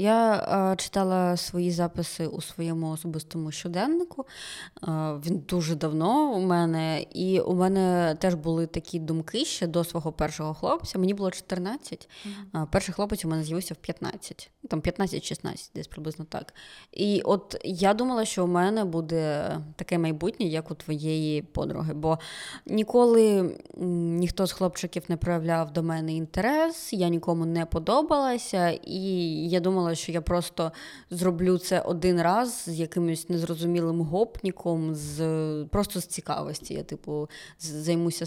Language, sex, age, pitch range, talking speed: Ukrainian, female, 20-39, 160-190 Hz, 140 wpm